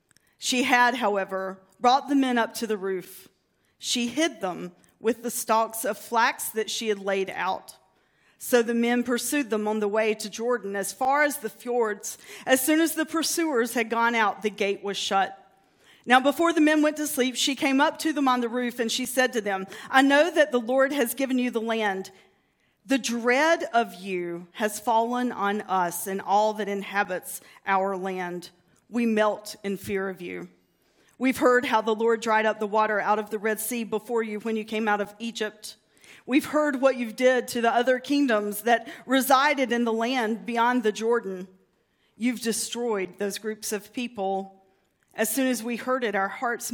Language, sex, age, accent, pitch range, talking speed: English, female, 40-59, American, 200-245 Hz, 195 wpm